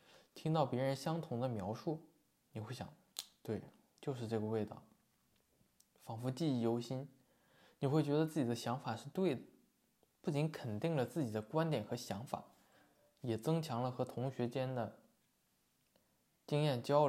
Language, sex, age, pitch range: Chinese, male, 20-39, 110-145 Hz